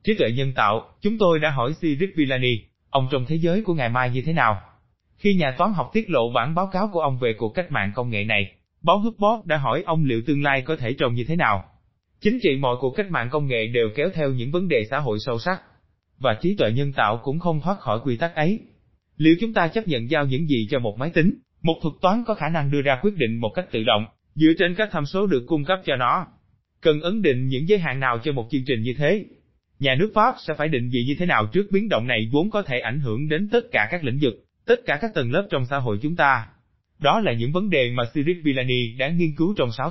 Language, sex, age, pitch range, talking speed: Vietnamese, male, 20-39, 120-180 Hz, 270 wpm